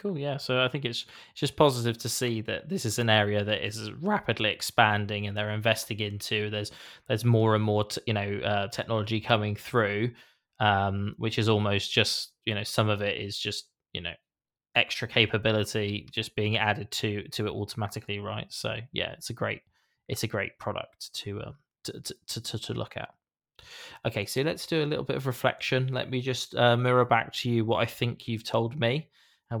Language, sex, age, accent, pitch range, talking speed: English, male, 20-39, British, 105-125 Hz, 205 wpm